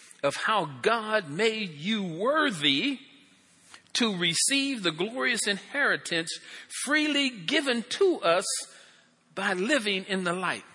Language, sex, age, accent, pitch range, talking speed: English, male, 50-69, American, 195-255 Hz, 110 wpm